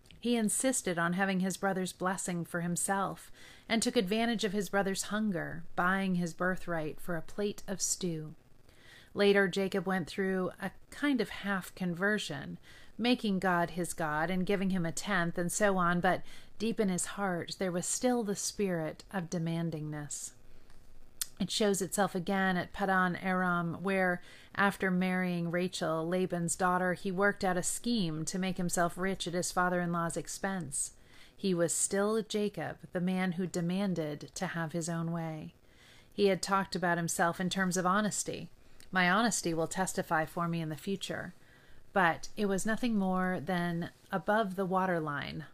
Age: 40-59